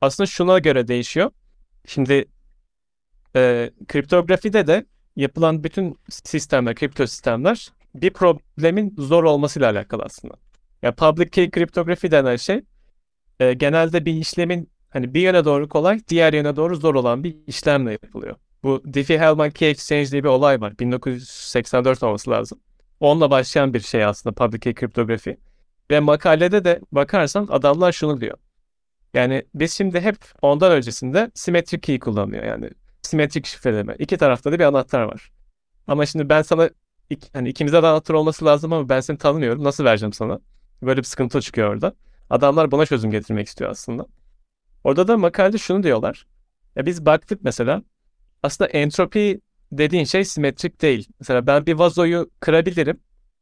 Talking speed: 155 wpm